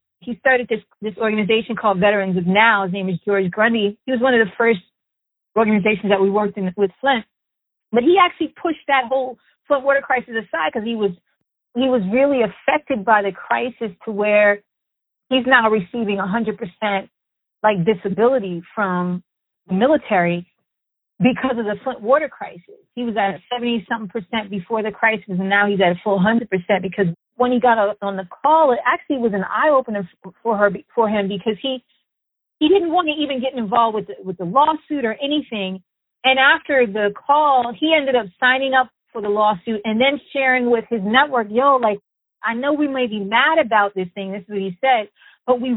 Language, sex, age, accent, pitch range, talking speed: English, female, 30-49, American, 200-260 Hz, 200 wpm